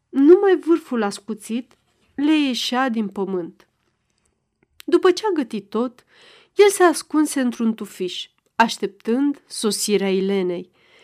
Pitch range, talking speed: 195-280 Hz, 110 wpm